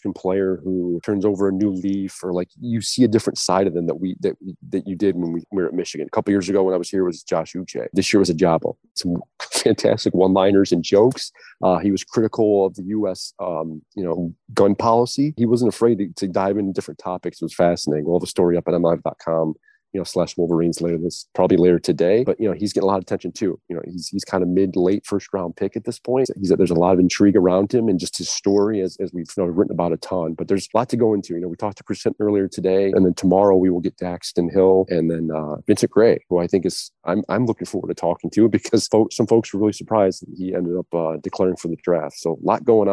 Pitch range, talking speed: 90-100 Hz, 270 wpm